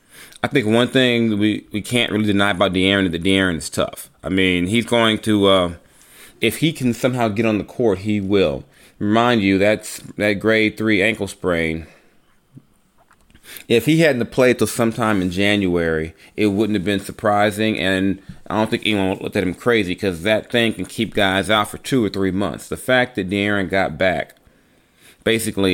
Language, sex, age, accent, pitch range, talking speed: English, male, 30-49, American, 95-115 Hz, 195 wpm